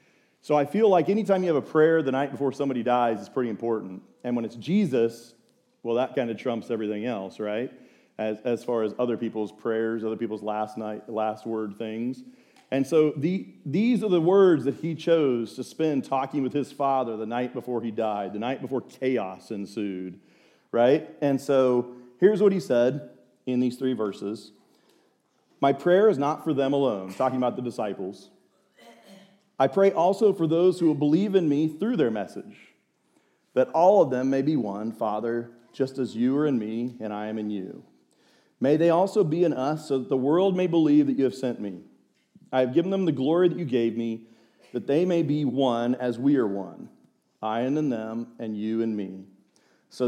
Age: 40-59